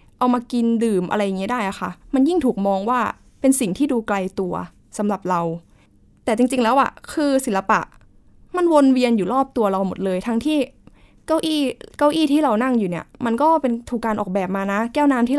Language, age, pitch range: Thai, 10-29, 200-260 Hz